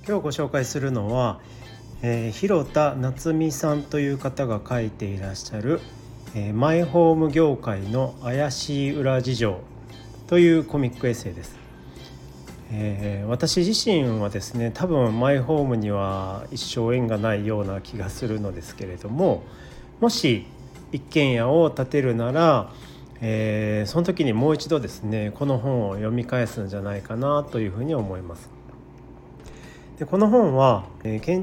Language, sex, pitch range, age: Japanese, male, 105-145 Hz, 40-59